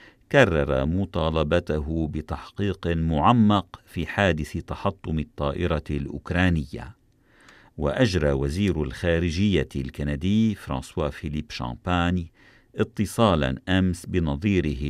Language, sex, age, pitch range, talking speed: Arabic, male, 50-69, 75-95 Hz, 75 wpm